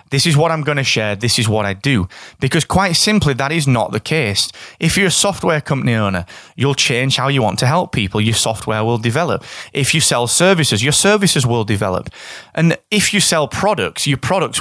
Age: 30-49